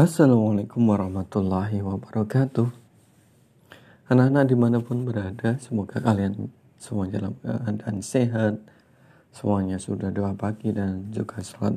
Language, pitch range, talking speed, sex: Indonesian, 105-125 Hz, 95 wpm, male